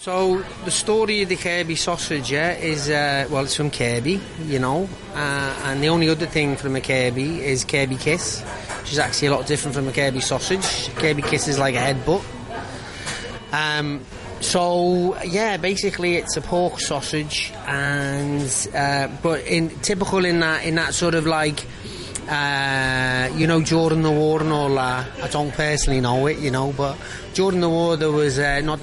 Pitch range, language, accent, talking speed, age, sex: 130-160 Hz, English, British, 185 wpm, 30-49, male